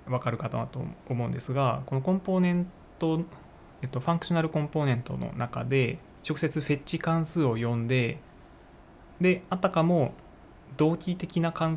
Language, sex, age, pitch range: Japanese, male, 20-39, 120-160 Hz